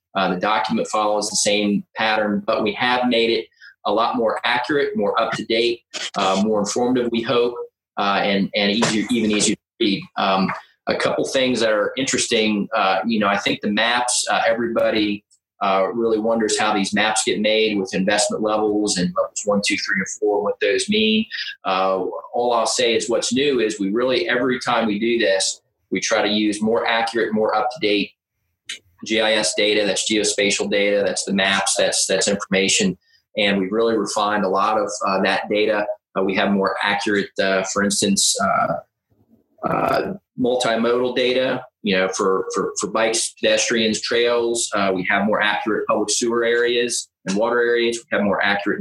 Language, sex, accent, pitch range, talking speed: English, male, American, 105-120 Hz, 185 wpm